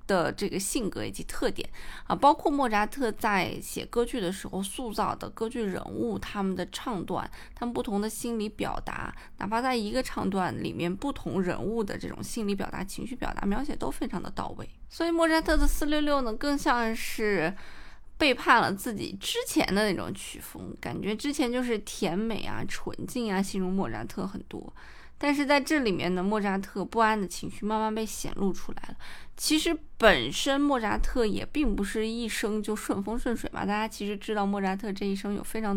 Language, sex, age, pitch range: Chinese, female, 20-39, 195-250 Hz